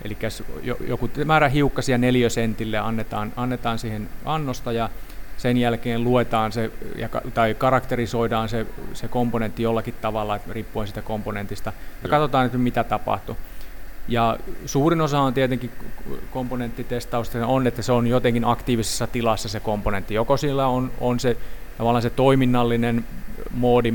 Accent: native